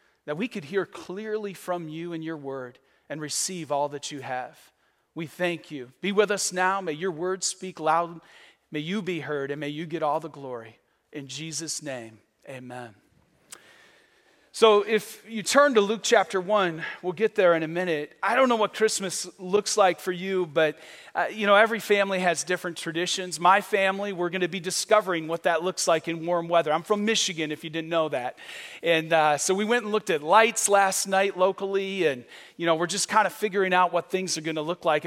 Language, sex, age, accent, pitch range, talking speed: English, male, 40-59, American, 165-205 Hz, 215 wpm